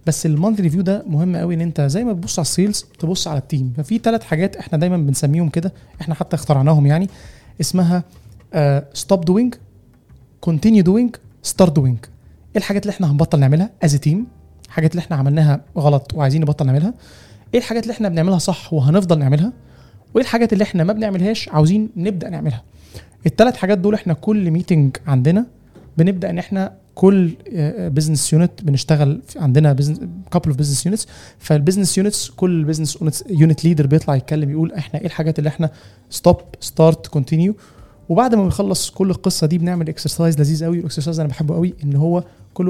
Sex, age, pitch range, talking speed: male, 20-39, 150-190 Hz, 175 wpm